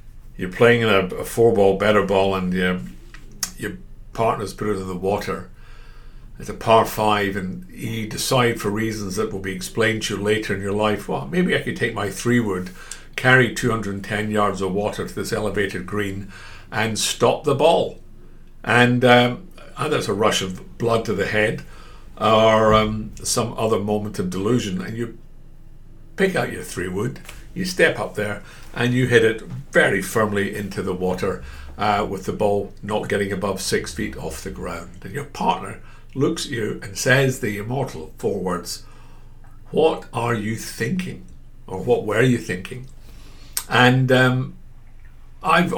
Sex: male